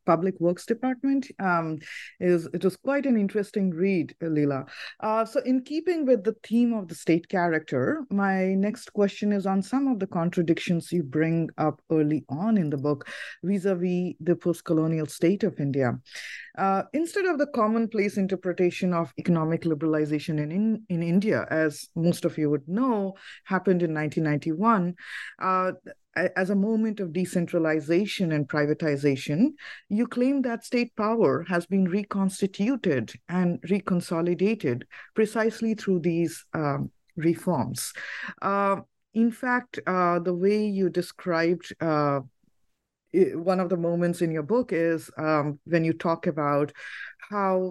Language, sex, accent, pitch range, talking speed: English, female, Indian, 160-205 Hz, 140 wpm